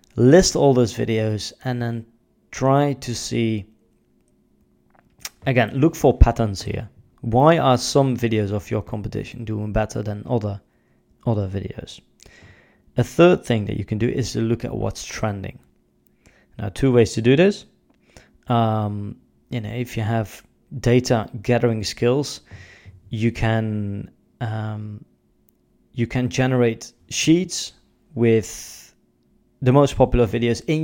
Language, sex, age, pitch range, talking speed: English, male, 20-39, 110-125 Hz, 130 wpm